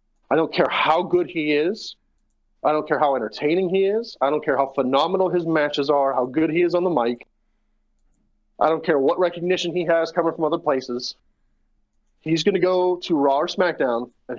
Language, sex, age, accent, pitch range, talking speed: English, male, 30-49, American, 135-175 Hz, 205 wpm